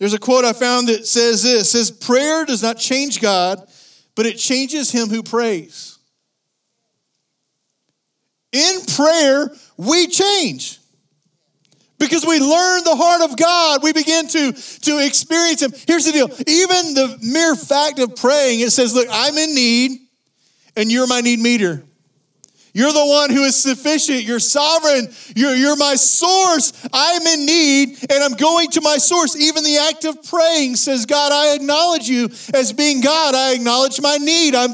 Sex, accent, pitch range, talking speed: male, American, 250-315 Hz, 170 wpm